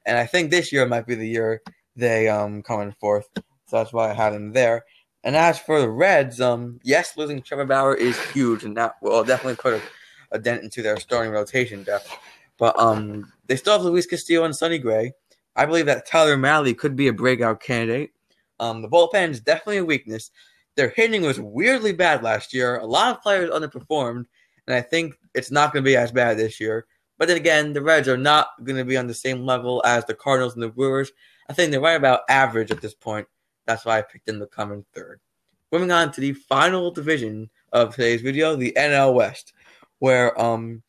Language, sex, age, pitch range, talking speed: English, male, 20-39, 115-165 Hz, 215 wpm